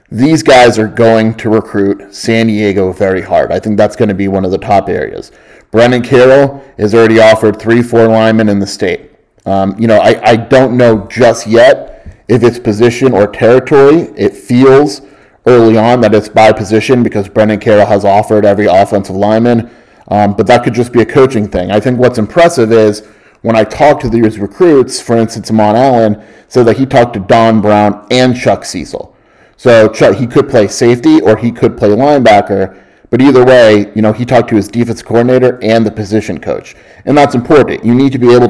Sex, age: male, 30-49